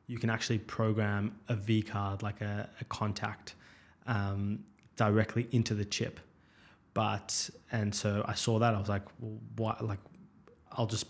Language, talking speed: English, 160 wpm